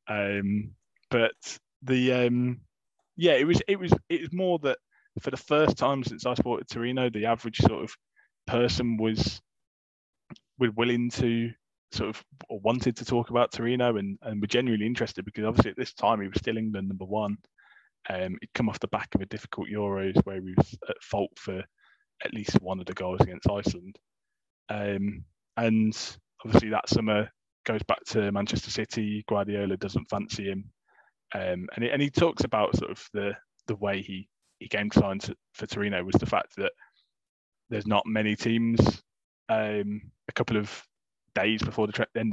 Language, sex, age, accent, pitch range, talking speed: English, male, 20-39, British, 105-120 Hz, 185 wpm